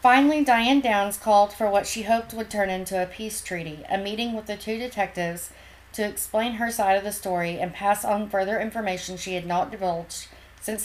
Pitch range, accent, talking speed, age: 185-220 Hz, American, 205 wpm, 40-59